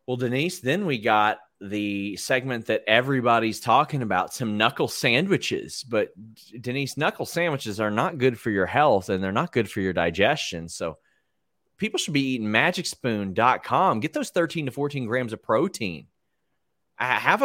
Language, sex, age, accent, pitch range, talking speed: English, male, 30-49, American, 110-140 Hz, 160 wpm